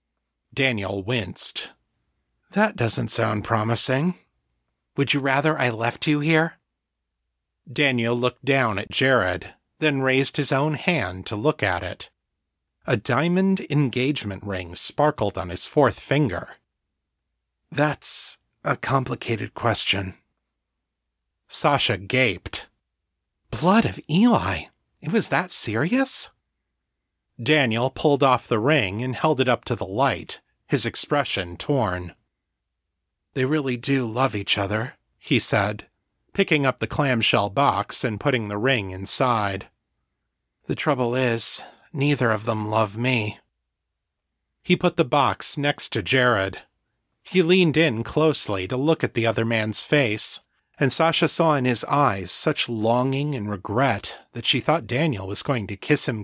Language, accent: English, American